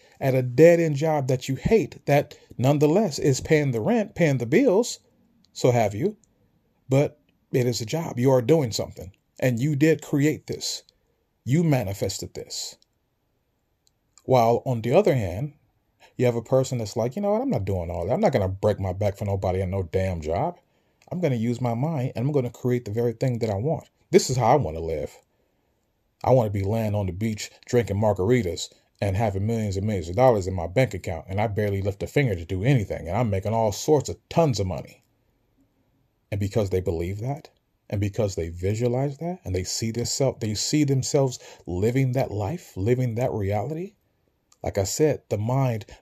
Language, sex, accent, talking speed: English, male, American, 200 wpm